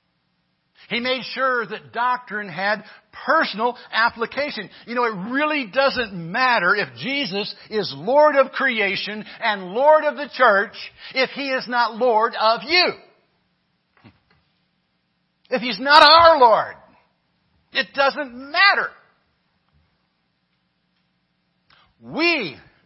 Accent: American